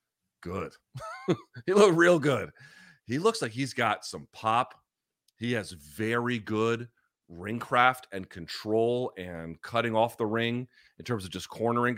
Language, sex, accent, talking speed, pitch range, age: English, male, American, 150 wpm, 105-135 Hz, 30-49